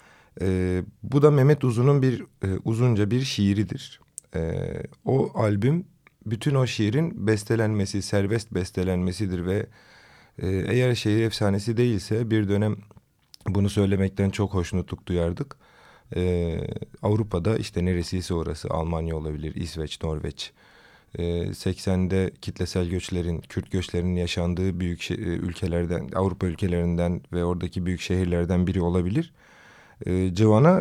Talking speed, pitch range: 115 wpm, 85-110 Hz